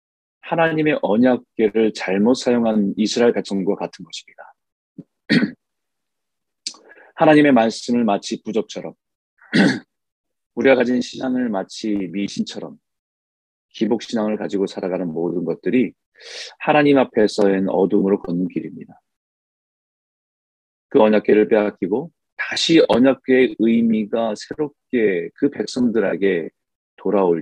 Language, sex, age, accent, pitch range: Korean, male, 40-59, native, 100-135 Hz